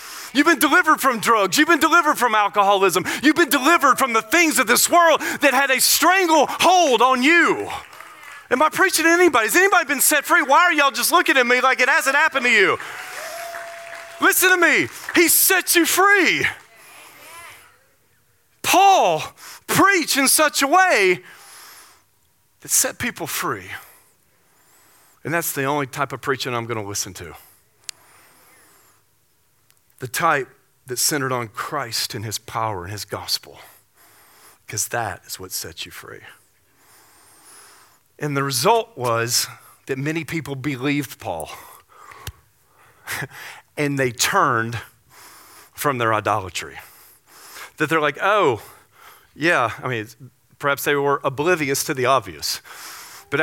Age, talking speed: 40-59, 140 wpm